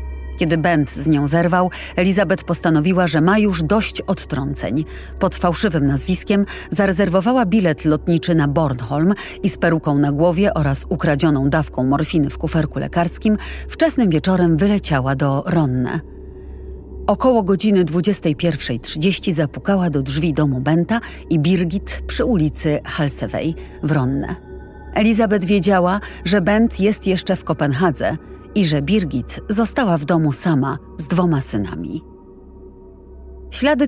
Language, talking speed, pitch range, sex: Polish, 125 wpm, 145-185 Hz, female